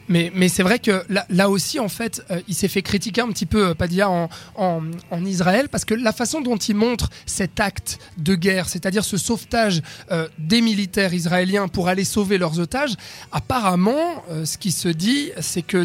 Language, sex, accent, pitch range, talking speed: French, male, French, 180-225 Hz, 210 wpm